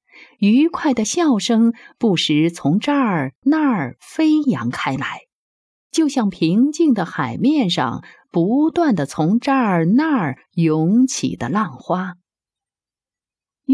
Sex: female